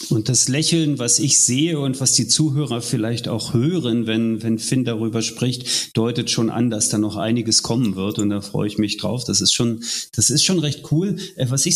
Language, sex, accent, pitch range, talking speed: German, male, German, 110-130 Hz, 220 wpm